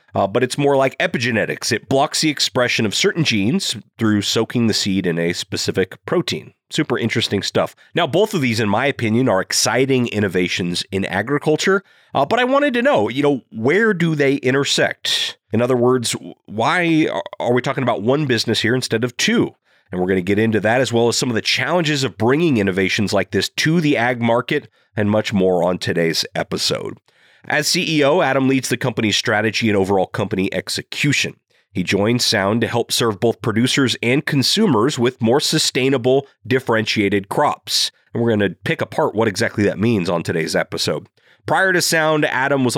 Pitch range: 105-135 Hz